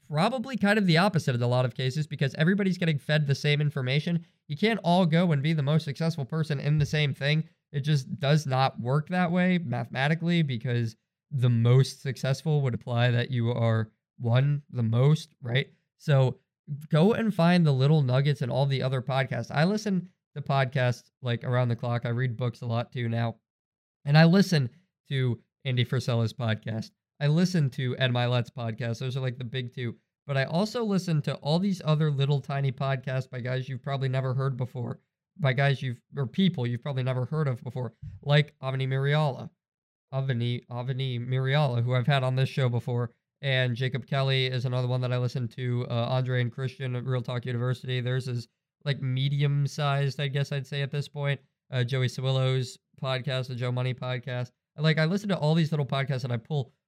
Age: 20-39